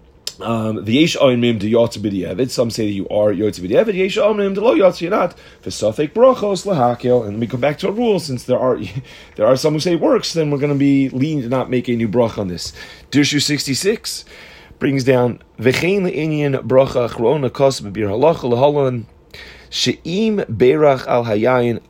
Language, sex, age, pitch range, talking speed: English, male, 30-49, 115-150 Hz, 190 wpm